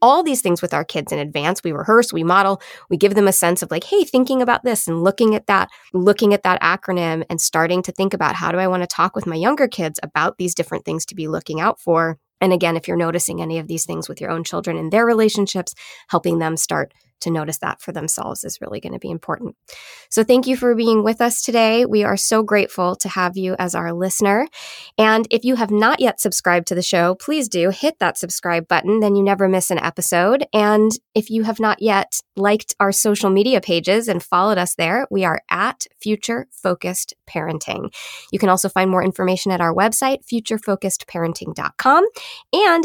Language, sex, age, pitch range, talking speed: English, female, 20-39, 175-220 Hz, 220 wpm